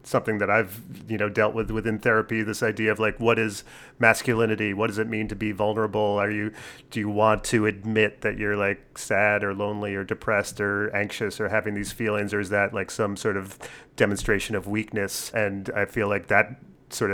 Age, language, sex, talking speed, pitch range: 30-49, English, male, 210 wpm, 100-115 Hz